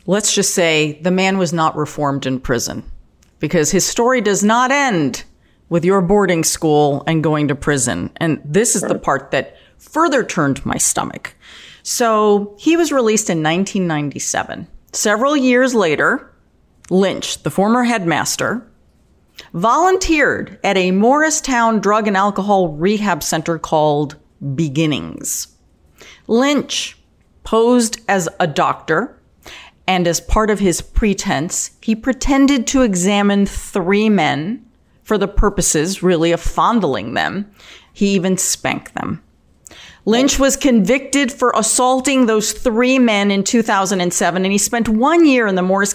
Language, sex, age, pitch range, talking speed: English, female, 40-59, 165-225 Hz, 135 wpm